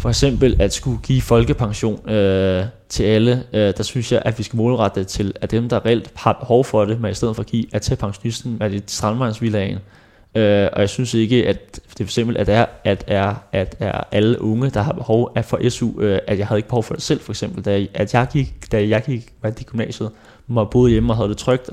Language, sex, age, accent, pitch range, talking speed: Danish, male, 20-39, native, 100-120 Hz, 235 wpm